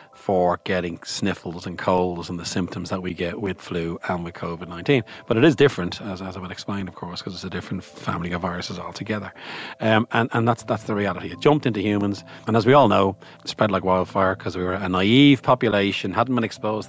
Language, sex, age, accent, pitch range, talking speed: English, male, 40-59, Irish, 90-115 Hz, 225 wpm